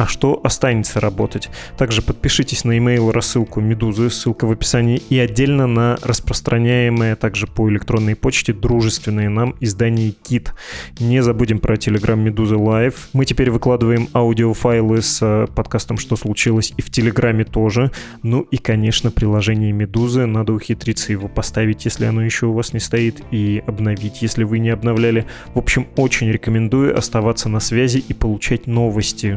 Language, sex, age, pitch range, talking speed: Russian, male, 20-39, 110-120 Hz, 155 wpm